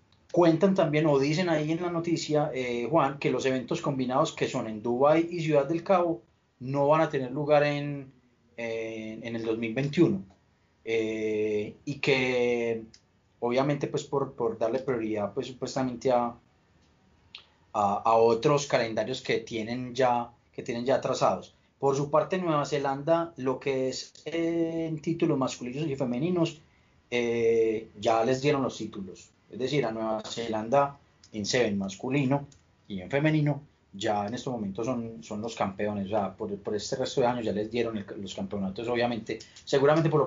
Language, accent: Spanish, Colombian